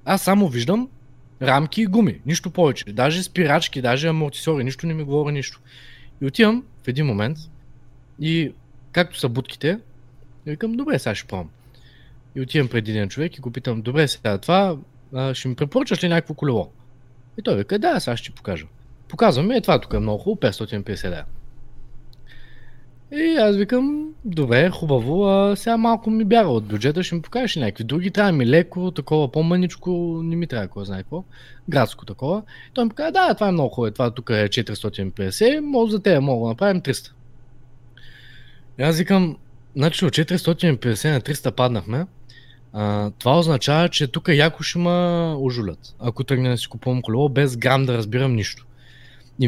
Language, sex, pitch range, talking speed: Bulgarian, male, 125-170 Hz, 175 wpm